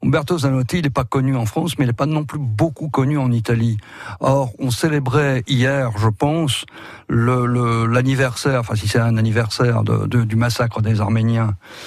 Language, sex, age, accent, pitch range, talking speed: French, male, 60-79, French, 115-150 Hz, 190 wpm